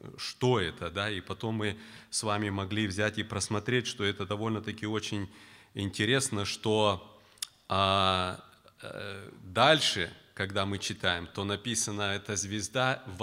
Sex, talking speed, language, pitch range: male, 130 wpm, Russian, 95-115 Hz